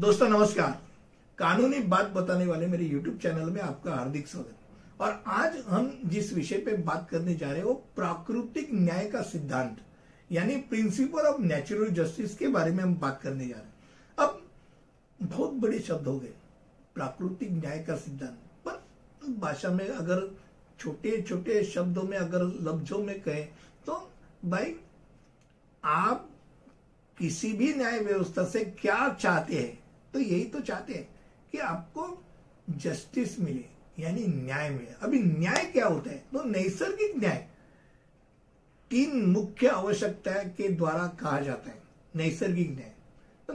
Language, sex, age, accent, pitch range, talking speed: Hindi, male, 60-79, native, 165-235 Hz, 145 wpm